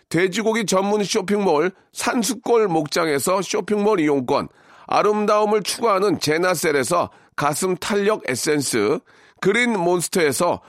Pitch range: 185-230 Hz